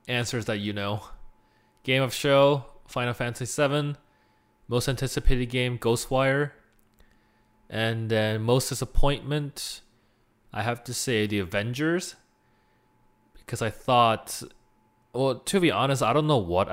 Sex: male